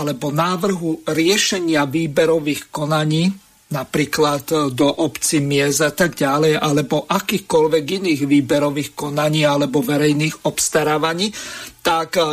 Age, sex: 50-69, male